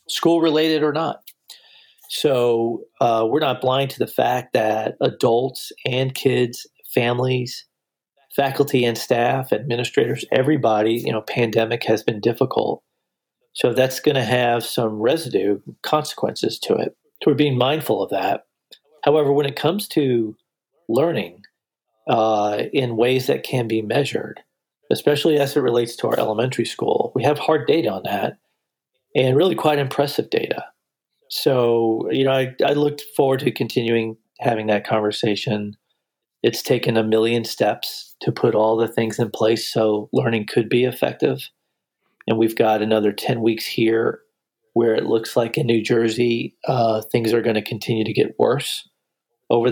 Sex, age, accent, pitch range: male, 40-59, American, 110-135 Hz